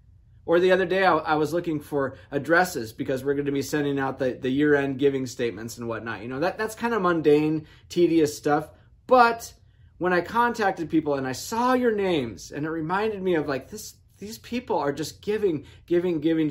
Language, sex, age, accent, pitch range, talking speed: English, male, 20-39, American, 130-175 Hz, 205 wpm